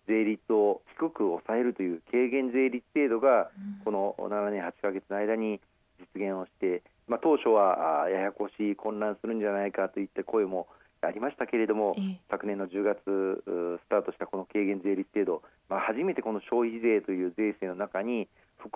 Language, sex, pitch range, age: Japanese, male, 100-120 Hz, 40-59